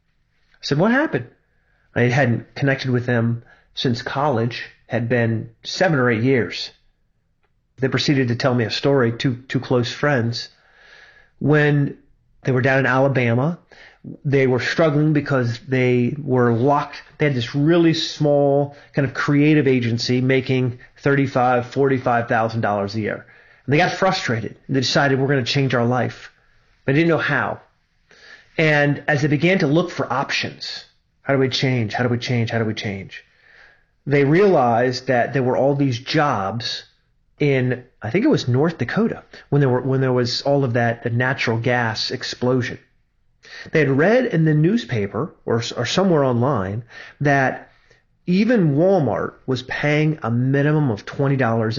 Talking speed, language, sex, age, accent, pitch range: 160 wpm, English, male, 40-59, American, 120-150 Hz